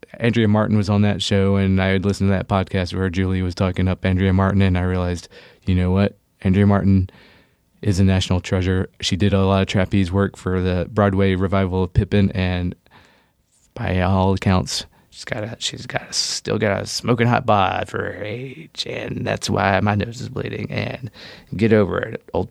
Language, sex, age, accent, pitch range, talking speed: English, male, 30-49, American, 95-120 Hz, 205 wpm